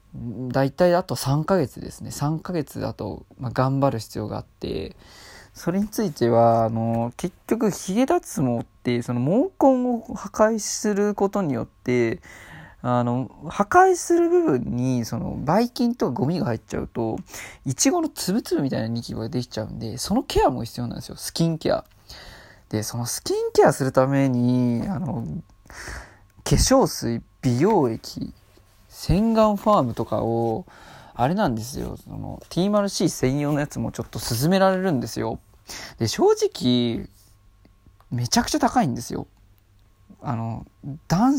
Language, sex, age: Japanese, male, 20-39